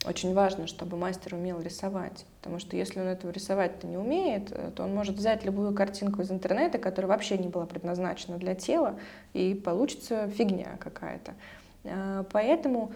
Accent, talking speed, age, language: native, 155 wpm, 20-39, Russian